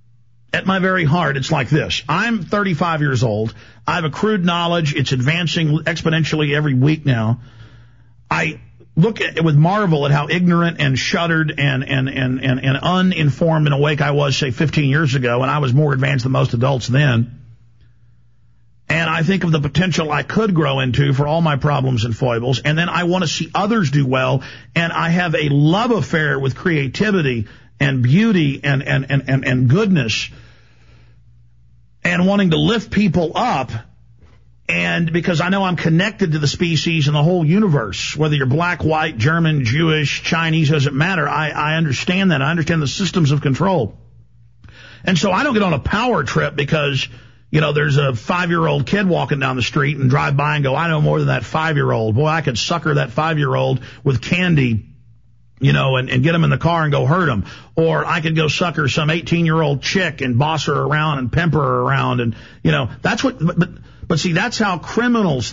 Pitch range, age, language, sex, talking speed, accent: 130-165 Hz, 50-69, English, male, 205 wpm, American